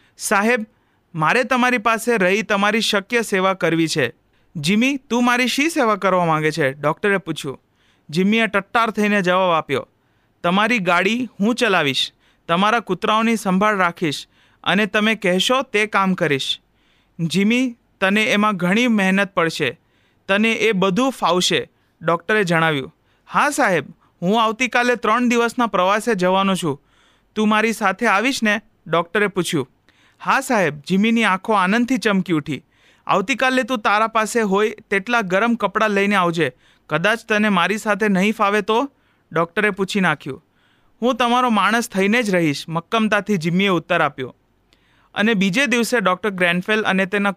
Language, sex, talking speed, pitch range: Gujarati, male, 140 wpm, 175-225 Hz